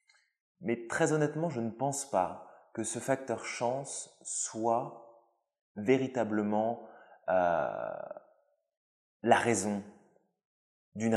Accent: French